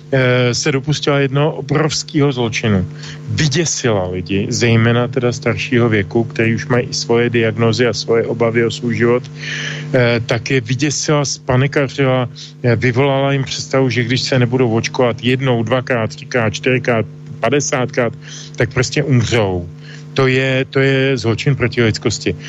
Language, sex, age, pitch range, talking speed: Slovak, male, 40-59, 120-145 Hz, 135 wpm